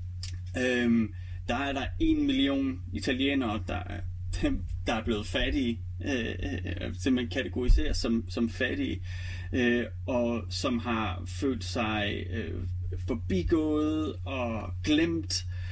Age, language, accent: 30-49, Danish, native